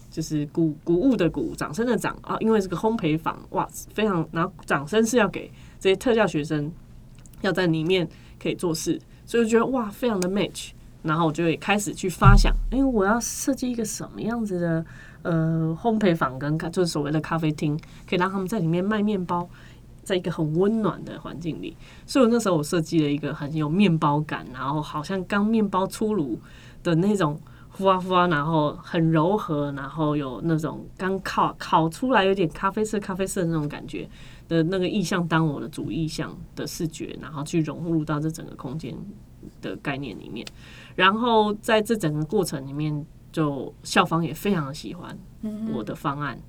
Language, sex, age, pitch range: Chinese, female, 20-39, 155-200 Hz